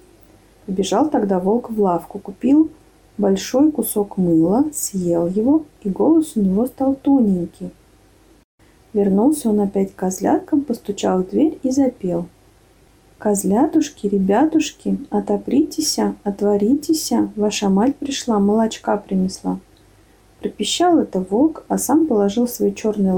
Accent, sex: native, female